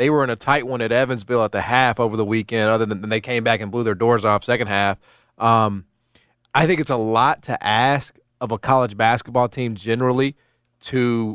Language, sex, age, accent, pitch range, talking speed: English, male, 30-49, American, 115-135 Hz, 215 wpm